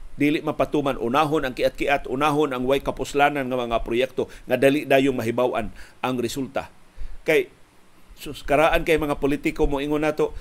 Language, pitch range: Filipino, 130-160 Hz